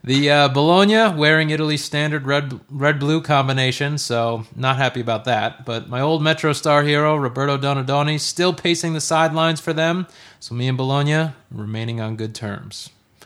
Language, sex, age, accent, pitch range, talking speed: English, male, 30-49, American, 125-170 Hz, 165 wpm